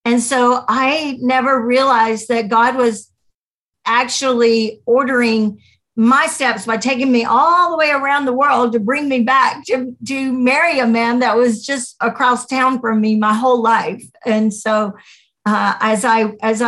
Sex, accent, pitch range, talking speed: female, American, 220-255 Hz, 165 wpm